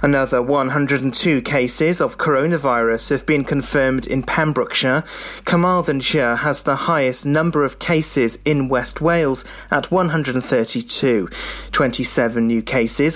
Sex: male